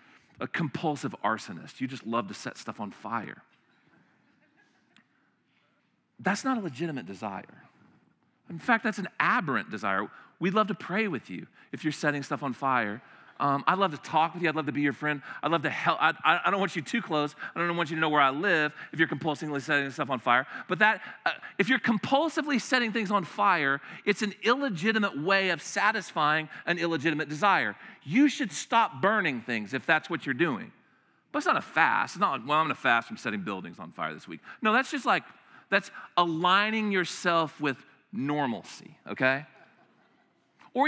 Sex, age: male, 40-59